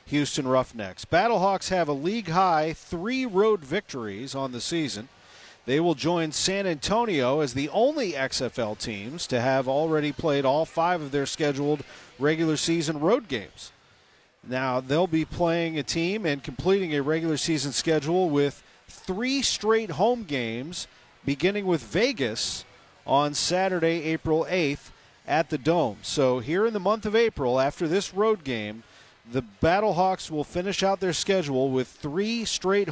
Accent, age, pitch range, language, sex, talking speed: American, 40-59, 140-185 Hz, English, male, 155 wpm